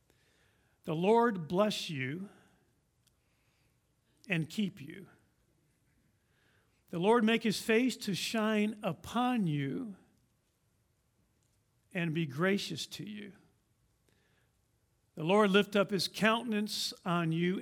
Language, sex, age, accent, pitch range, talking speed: English, male, 50-69, American, 165-220 Hz, 100 wpm